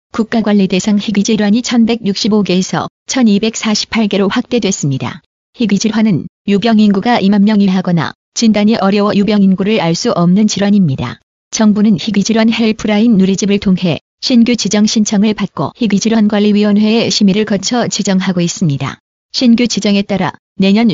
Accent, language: native, Korean